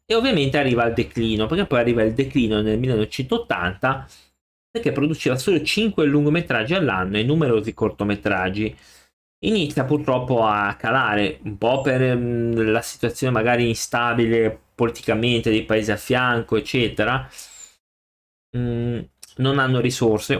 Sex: male